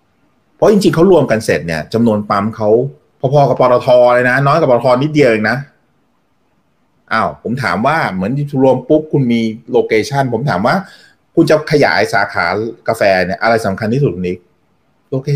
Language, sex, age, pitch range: Thai, male, 30-49, 100-140 Hz